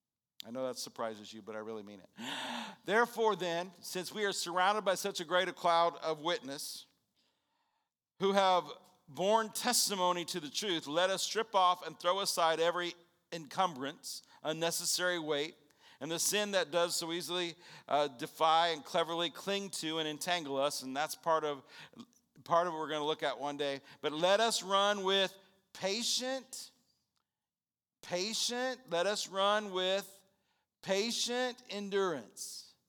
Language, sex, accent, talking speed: English, male, American, 150 wpm